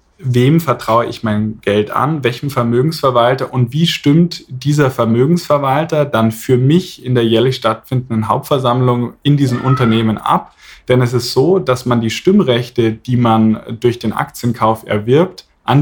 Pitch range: 115-135 Hz